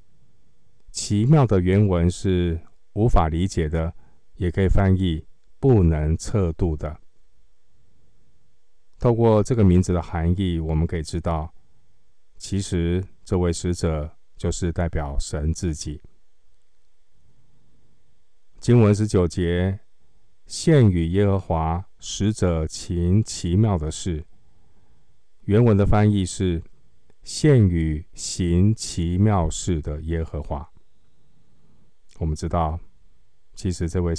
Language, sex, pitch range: Chinese, male, 80-100 Hz